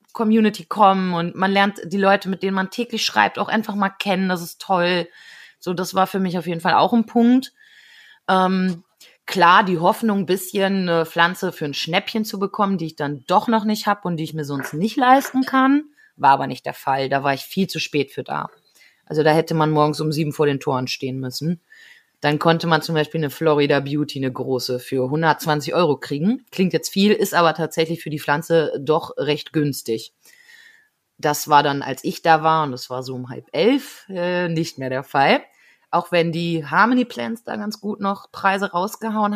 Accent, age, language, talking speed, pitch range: German, 30-49, German, 210 wpm, 155-205 Hz